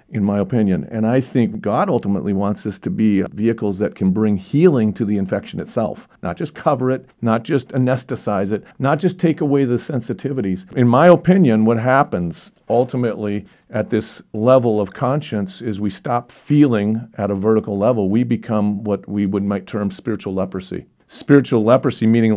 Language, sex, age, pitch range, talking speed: English, male, 50-69, 100-120 Hz, 175 wpm